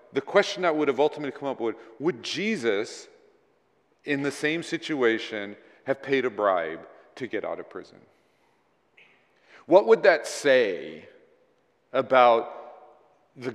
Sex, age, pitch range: male, 40-59, 120-175 Hz